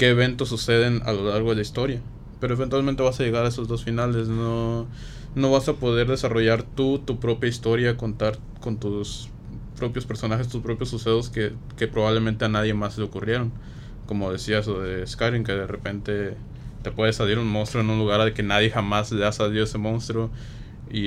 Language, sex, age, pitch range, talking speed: Spanish, male, 20-39, 110-130 Hz, 195 wpm